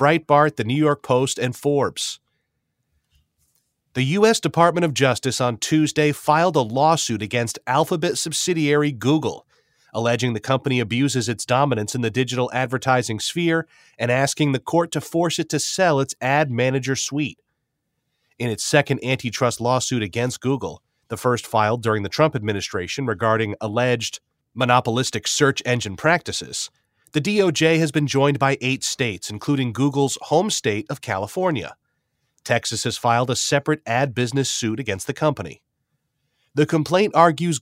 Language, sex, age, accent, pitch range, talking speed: English, male, 30-49, American, 120-150 Hz, 150 wpm